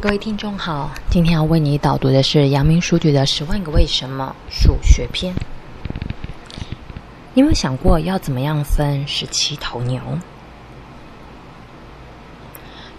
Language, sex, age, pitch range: Chinese, female, 20-39, 140-180 Hz